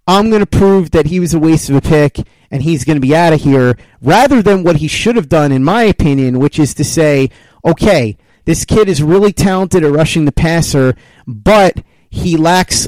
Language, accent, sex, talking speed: English, American, male, 220 wpm